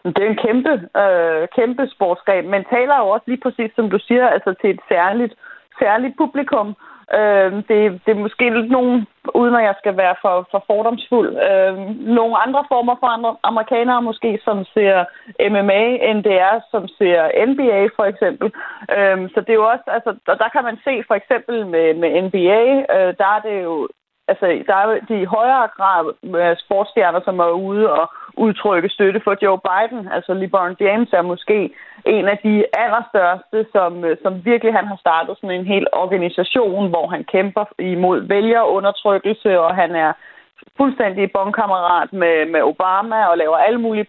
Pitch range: 185-230 Hz